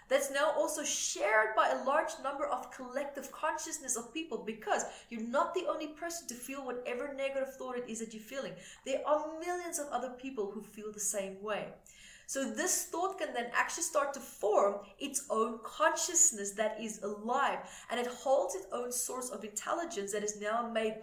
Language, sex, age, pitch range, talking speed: English, female, 30-49, 215-285 Hz, 190 wpm